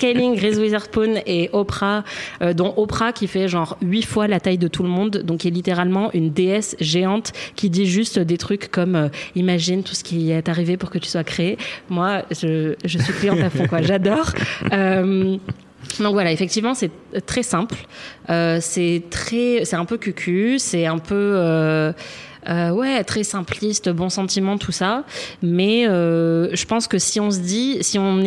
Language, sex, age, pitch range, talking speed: French, female, 20-39, 175-215 Hz, 195 wpm